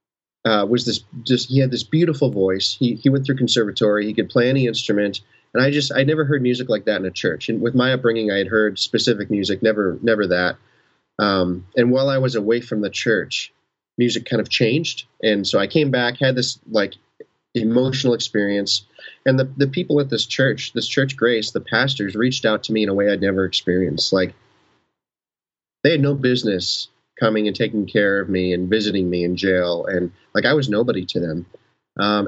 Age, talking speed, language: 30-49, 210 wpm, English